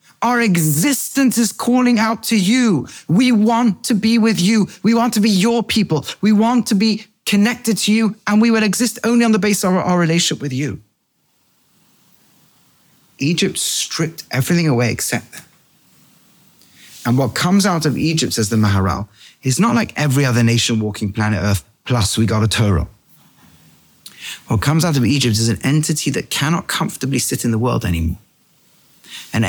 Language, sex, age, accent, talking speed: English, male, 30-49, British, 175 wpm